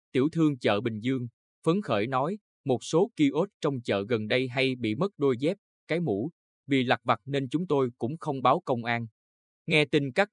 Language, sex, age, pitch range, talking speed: Vietnamese, male, 20-39, 110-150 Hz, 210 wpm